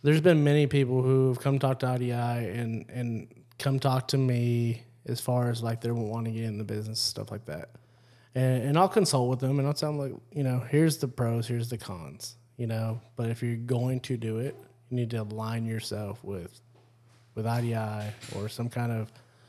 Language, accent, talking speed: English, American, 210 wpm